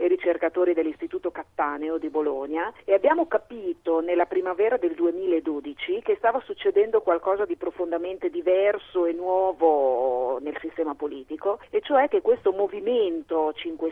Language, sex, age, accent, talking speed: Italian, female, 40-59, native, 135 wpm